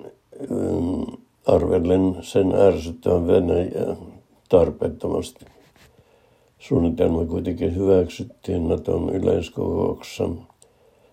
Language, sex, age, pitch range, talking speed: Finnish, male, 60-79, 85-95 Hz, 55 wpm